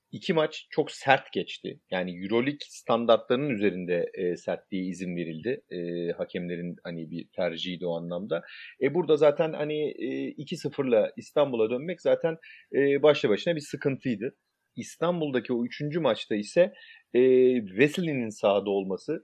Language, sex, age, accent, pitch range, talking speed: Turkish, male, 40-59, native, 95-150 Hz, 135 wpm